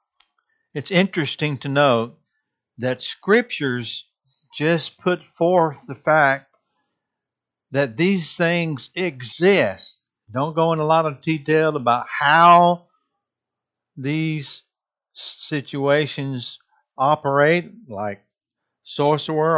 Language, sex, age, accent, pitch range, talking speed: English, male, 60-79, American, 130-165 Hz, 90 wpm